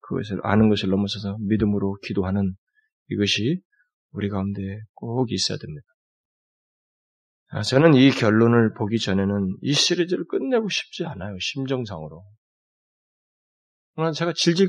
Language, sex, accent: Korean, male, native